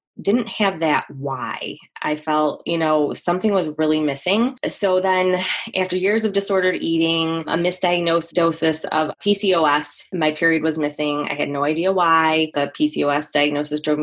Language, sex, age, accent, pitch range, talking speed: English, female, 20-39, American, 155-185 Hz, 160 wpm